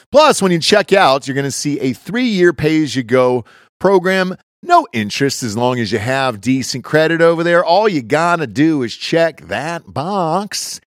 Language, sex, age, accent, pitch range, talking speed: English, male, 40-59, American, 135-220 Hz, 180 wpm